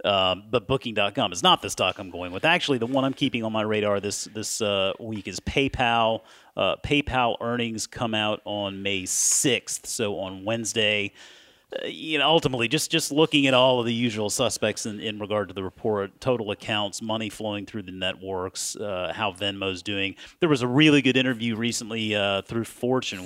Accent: American